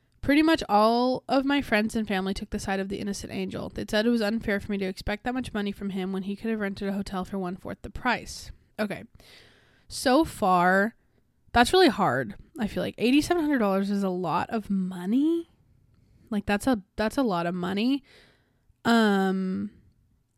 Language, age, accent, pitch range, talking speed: English, 20-39, American, 195-235 Hz, 190 wpm